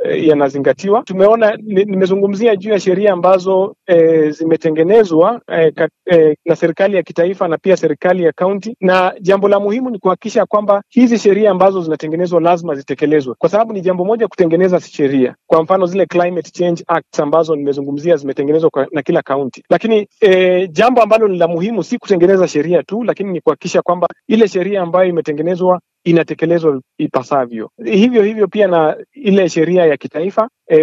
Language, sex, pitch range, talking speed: Swahili, male, 160-200 Hz, 165 wpm